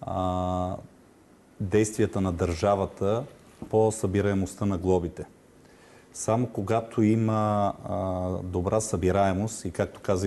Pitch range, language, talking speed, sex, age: 95-110 Hz, Bulgarian, 90 wpm, male, 40-59